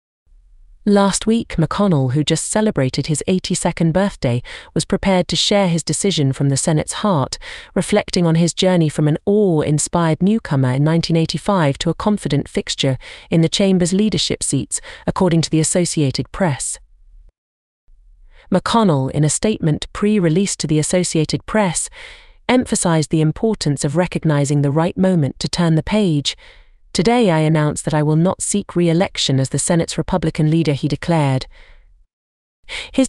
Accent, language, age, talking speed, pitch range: British, English, 40-59, 145 wpm, 145-185 Hz